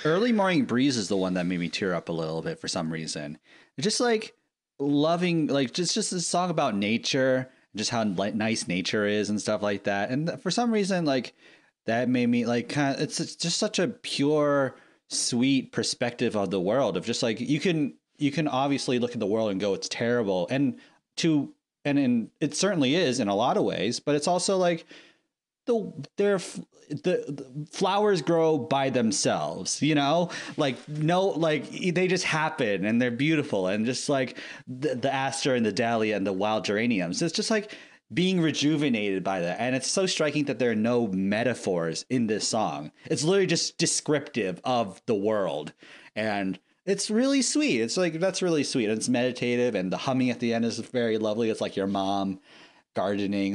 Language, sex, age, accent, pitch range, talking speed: English, male, 30-49, American, 110-170 Hz, 195 wpm